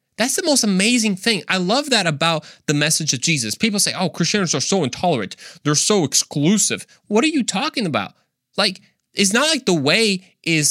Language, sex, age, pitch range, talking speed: English, male, 20-39, 135-200 Hz, 195 wpm